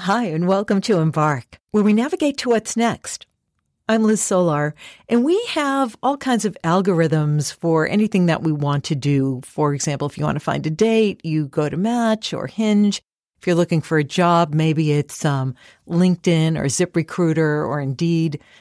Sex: female